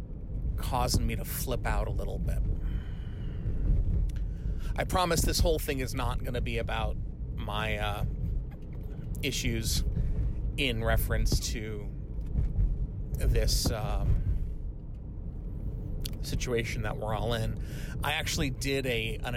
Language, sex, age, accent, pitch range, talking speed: English, male, 30-49, American, 105-140 Hz, 115 wpm